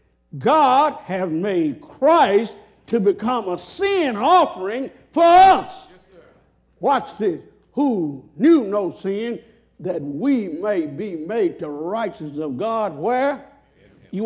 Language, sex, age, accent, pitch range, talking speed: English, male, 60-79, American, 185-275 Hz, 120 wpm